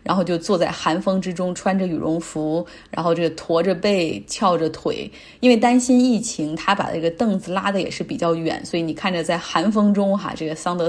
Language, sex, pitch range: Chinese, female, 170-220 Hz